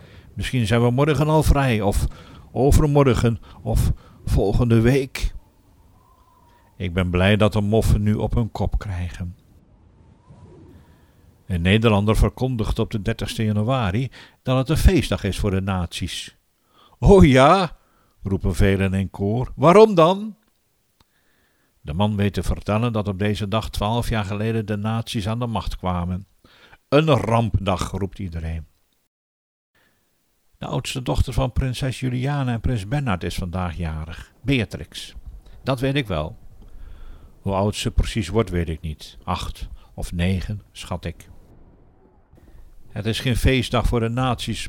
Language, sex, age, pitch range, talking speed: Dutch, male, 50-69, 95-115 Hz, 140 wpm